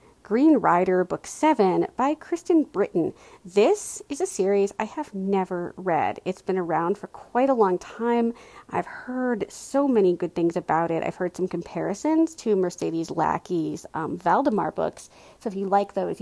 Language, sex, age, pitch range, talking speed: English, female, 40-59, 180-265 Hz, 170 wpm